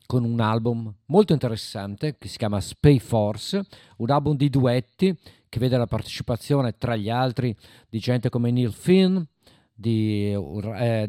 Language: Italian